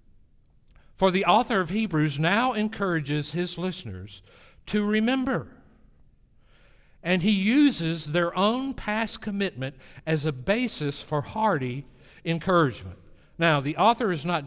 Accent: American